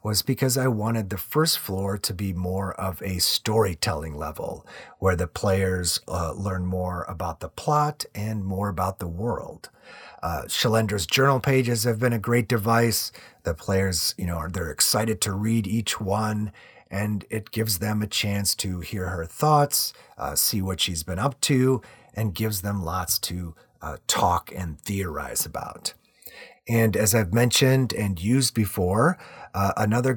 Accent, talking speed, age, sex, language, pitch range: American, 165 wpm, 30-49, male, English, 95-120 Hz